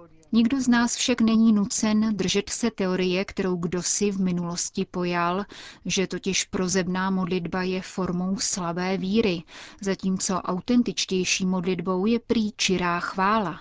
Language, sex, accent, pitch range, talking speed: Czech, female, native, 180-205 Hz, 130 wpm